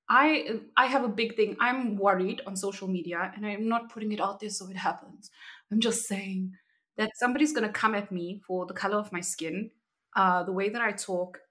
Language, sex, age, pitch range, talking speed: English, female, 20-39, 195-270 Hz, 225 wpm